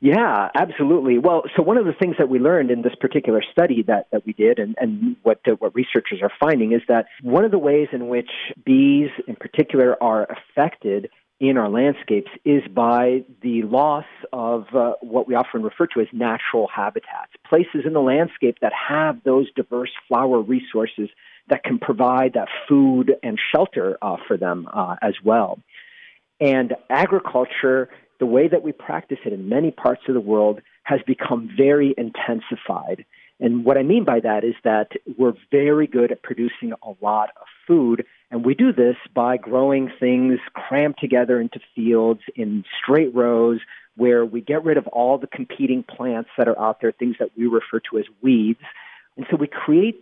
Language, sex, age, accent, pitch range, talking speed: English, male, 40-59, American, 120-150 Hz, 180 wpm